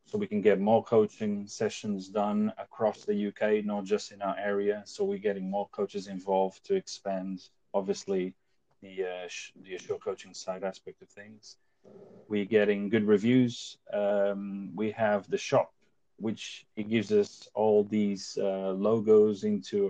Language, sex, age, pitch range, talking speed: English, male, 30-49, 95-135 Hz, 160 wpm